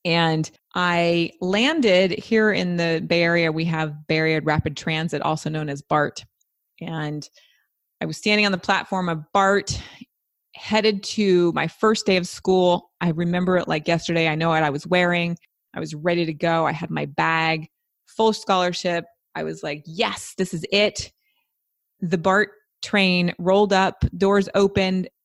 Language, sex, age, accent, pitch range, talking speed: English, female, 20-39, American, 155-195 Hz, 165 wpm